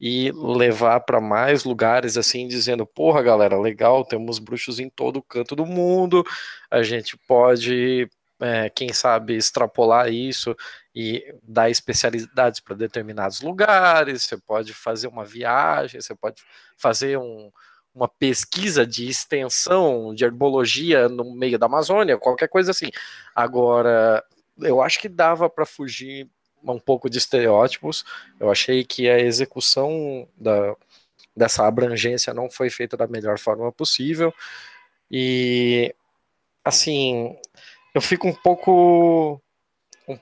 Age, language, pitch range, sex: 20-39, Portuguese, 120-155 Hz, male